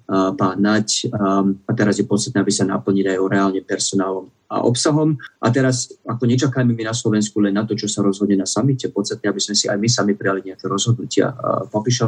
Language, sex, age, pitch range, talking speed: Slovak, male, 30-49, 100-115 Hz, 205 wpm